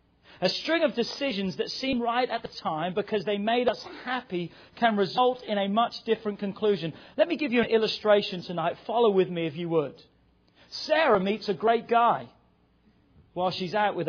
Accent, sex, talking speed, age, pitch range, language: British, male, 185 wpm, 40-59, 160-240 Hz, English